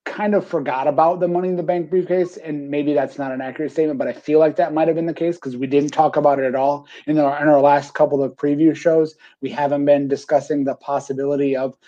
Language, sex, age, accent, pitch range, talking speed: English, male, 30-49, American, 140-150 Hz, 255 wpm